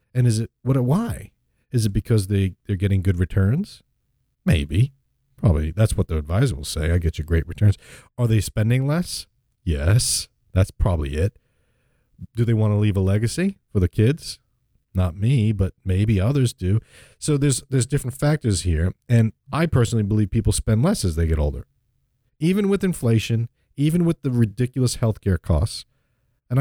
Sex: male